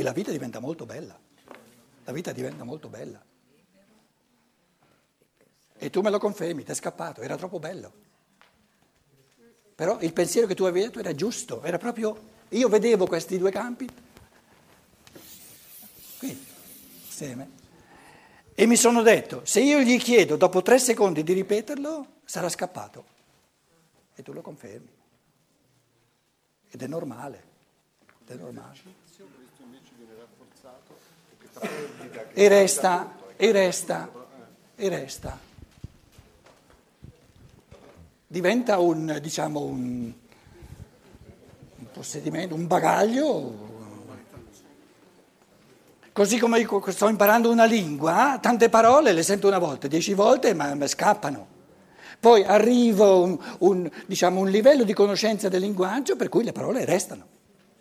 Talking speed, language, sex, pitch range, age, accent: 115 wpm, Italian, male, 170-225 Hz, 60-79, native